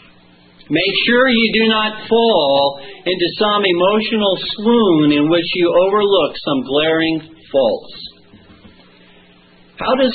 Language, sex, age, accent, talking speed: English, male, 50-69, American, 110 wpm